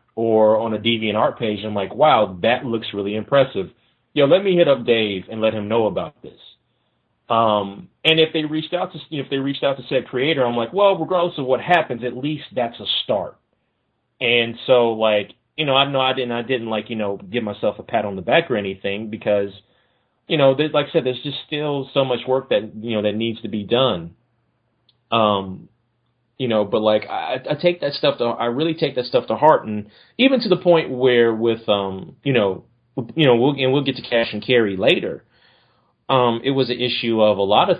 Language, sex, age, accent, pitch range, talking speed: English, male, 30-49, American, 110-135 Hz, 230 wpm